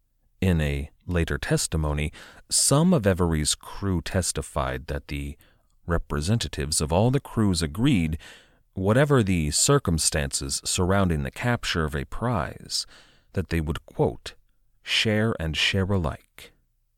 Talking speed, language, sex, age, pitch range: 120 wpm, English, male, 40-59, 75-105 Hz